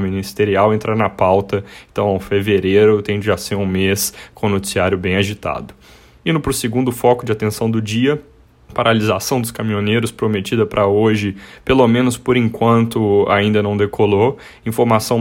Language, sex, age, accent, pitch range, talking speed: Portuguese, male, 20-39, Brazilian, 100-115 Hz, 155 wpm